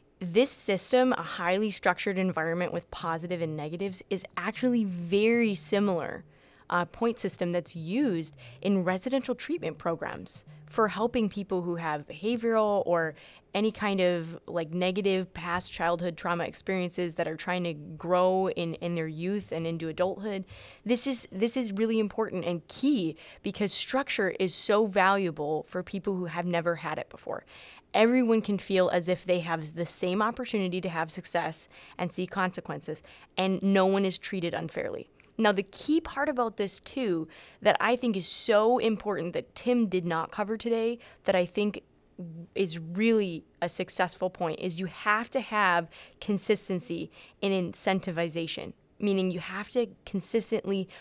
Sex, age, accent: female, 20-39, American